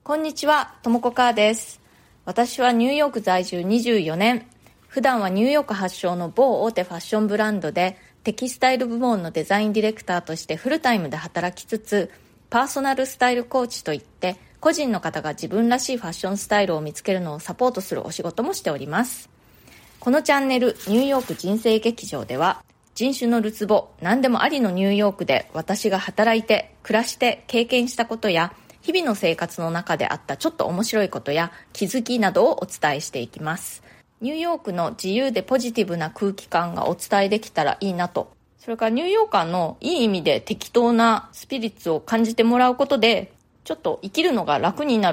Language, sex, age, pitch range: Japanese, female, 20-39, 180-250 Hz